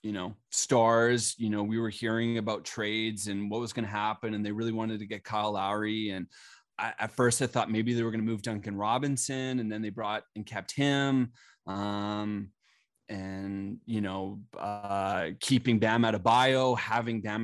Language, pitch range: English, 105-120 Hz